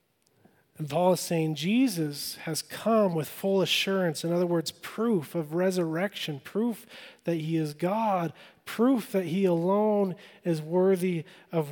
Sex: male